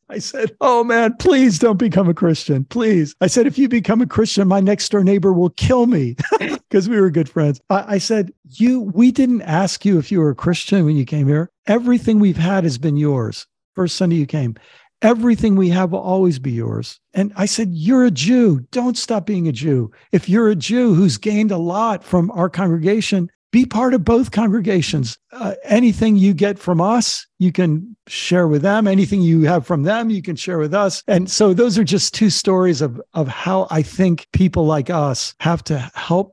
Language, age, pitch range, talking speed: English, 50-69, 150-200 Hz, 215 wpm